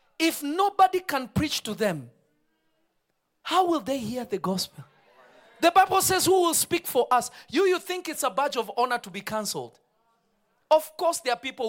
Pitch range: 215-335 Hz